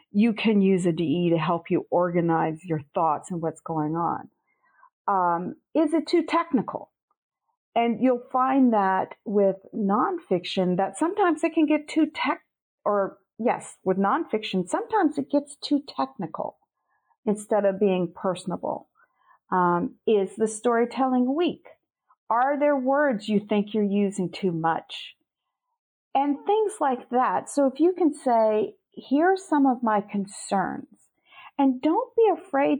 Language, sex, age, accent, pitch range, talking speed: English, female, 50-69, American, 195-290 Hz, 145 wpm